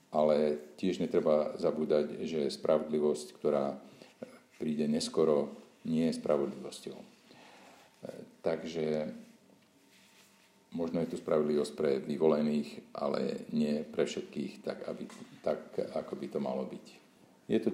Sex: male